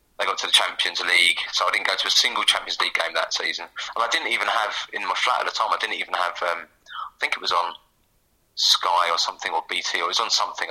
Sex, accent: male, British